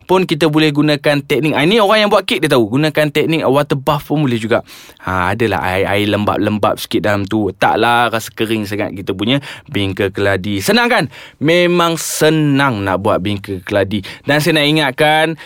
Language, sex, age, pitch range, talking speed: Malay, male, 20-39, 120-165 Hz, 185 wpm